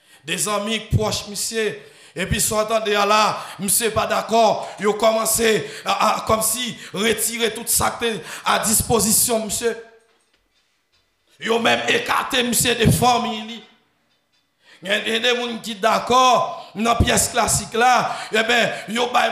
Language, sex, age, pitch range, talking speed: French, male, 60-79, 155-225 Hz, 145 wpm